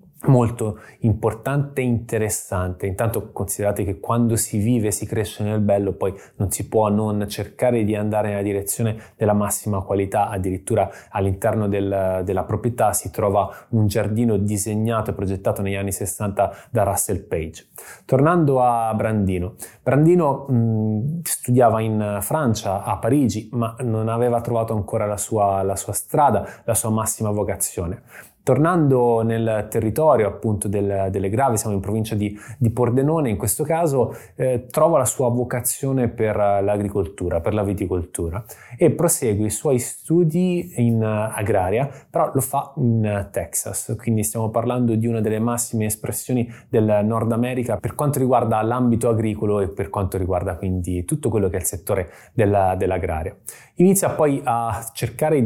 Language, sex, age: Italian, male, 20-39